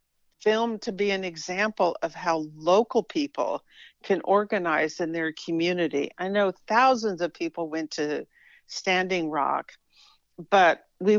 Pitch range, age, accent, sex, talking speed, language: 155-195 Hz, 50-69, American, female, 135 wpm, English